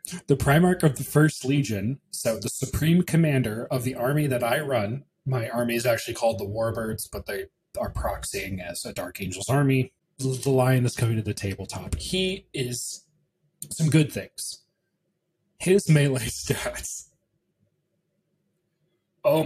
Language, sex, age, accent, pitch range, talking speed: English, male, 30-49, American, 120-155 Hz, 150 wpm